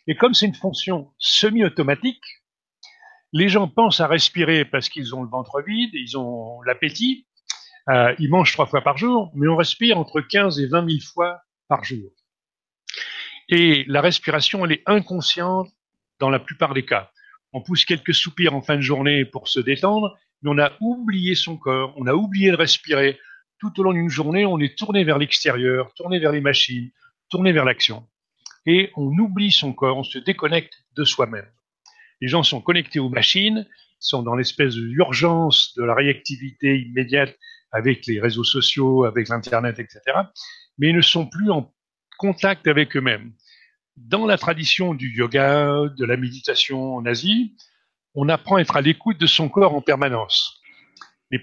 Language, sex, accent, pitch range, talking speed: French, male, French, 135-190 Hz, 175 wpm